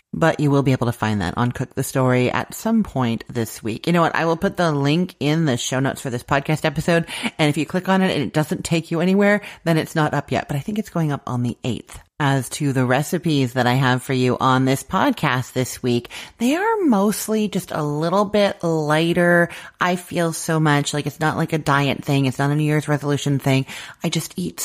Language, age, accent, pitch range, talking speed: English, 30-49, American, 125-160 Hz, 250 wpm